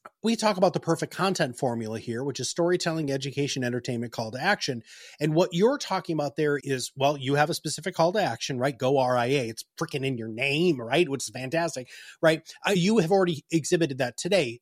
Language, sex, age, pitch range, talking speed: English, male, 30-49, 135-185 Hz, 205 wpm